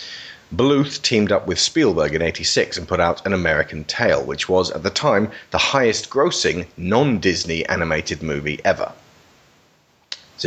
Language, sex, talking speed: English, male, 155 wpm